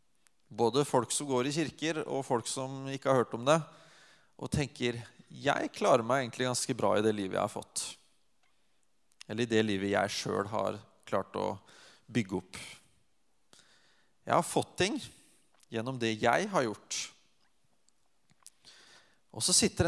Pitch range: 110-155 Hz